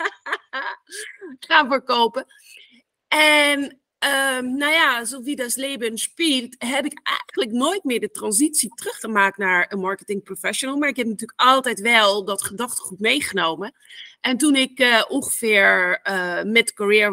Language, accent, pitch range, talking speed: Dutch, Dutch, 205-275 Hz, 135 wpm